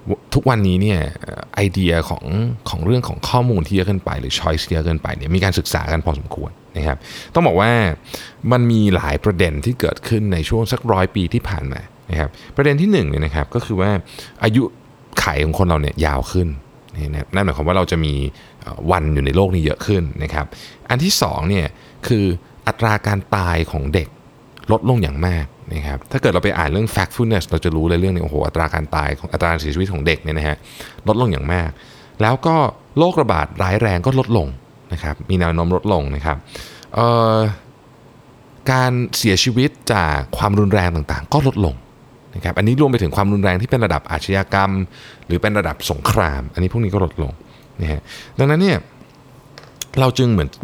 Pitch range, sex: 80-120 Hz, male